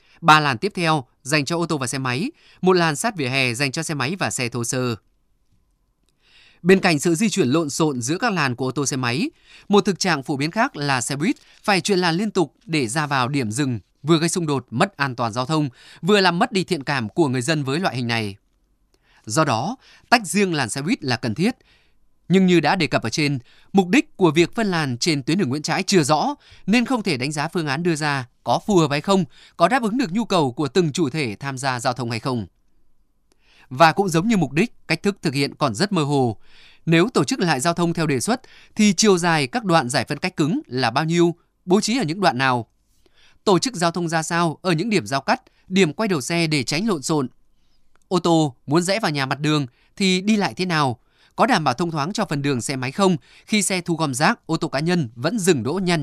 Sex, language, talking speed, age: male, Vietnamese, 255 wpm, 20-39